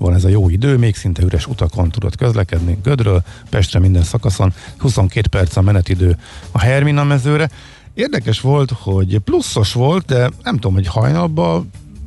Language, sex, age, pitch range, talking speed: Hungarian, male, 50-69, 95-115 Hz, 160 wpm